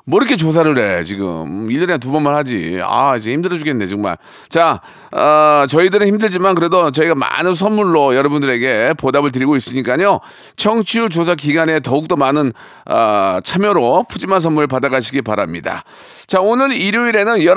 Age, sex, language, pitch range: 40-59, male, Korean, 155-210 Hz